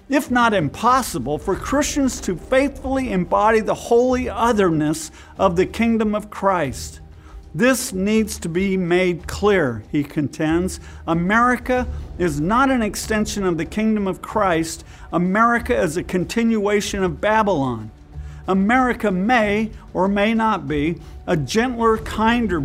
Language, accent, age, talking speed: English, American, 50-69, 130 wpm